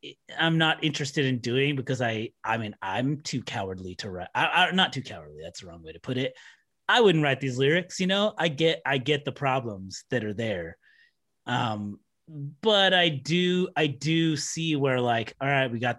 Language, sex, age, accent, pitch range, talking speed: English, male, 30-49, American, 120-155 Hz, 205 wpm